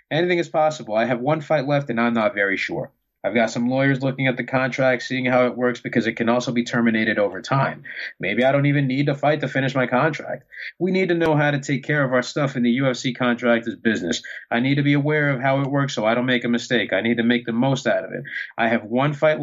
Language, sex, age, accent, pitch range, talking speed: English, male, 30-49, American, 120-145 Hz, 275 wpm